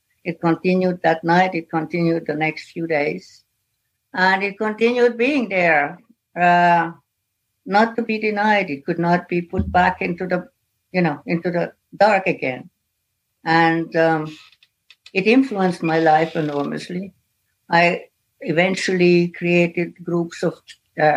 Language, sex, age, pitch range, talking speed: English, female, 60-79, 155-180 Hz, 135 wpm